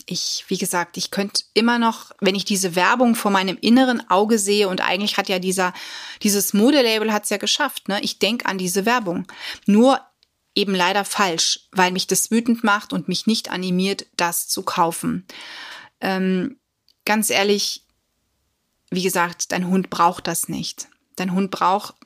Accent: German